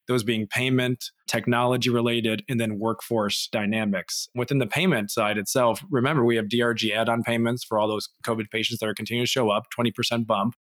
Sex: male